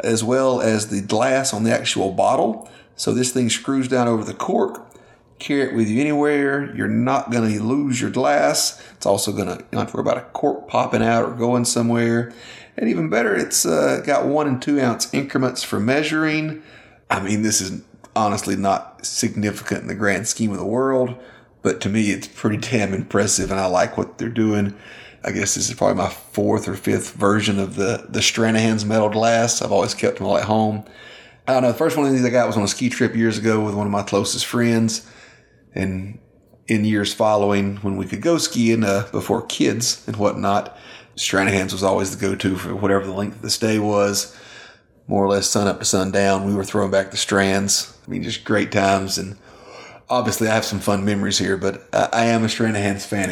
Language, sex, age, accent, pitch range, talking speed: English, male, 30-49, American, 100-120 Hz, 215 wpm